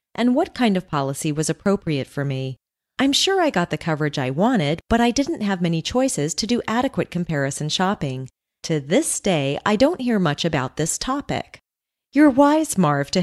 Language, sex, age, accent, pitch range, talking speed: English, female, 30-49, American, 150-230 Hz, 190 wpm